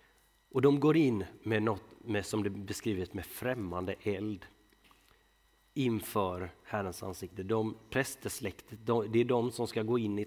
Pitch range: 100-120 Hz